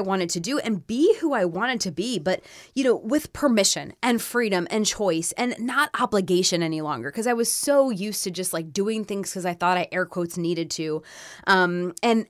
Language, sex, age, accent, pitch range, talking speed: English, female, 20-39, American, 175-235 Hz, 215 wpm